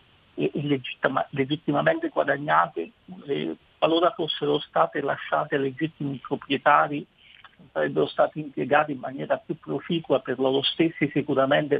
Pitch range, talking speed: 140-210 Hz, 95 wpm